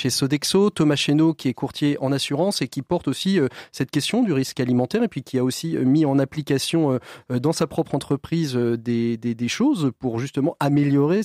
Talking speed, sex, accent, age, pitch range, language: 215 wpm, male, French, 40-59, 130-165 Hz, French